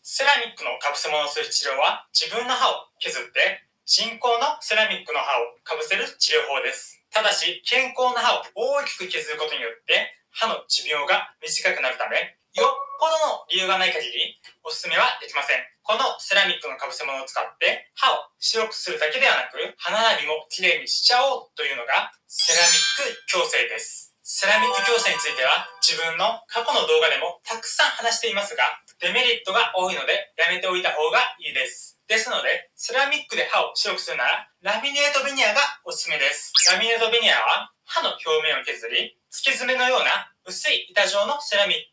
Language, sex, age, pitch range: Japanese, male, 20-39, 185-290 Hz